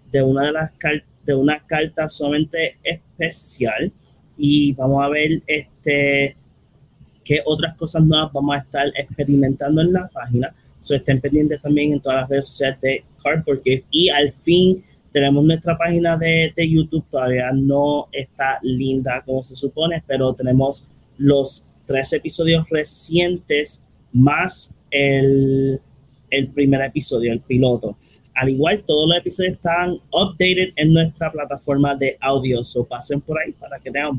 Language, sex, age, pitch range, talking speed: Spanish, male, 20-39, 135-160 Hz, 155 wpm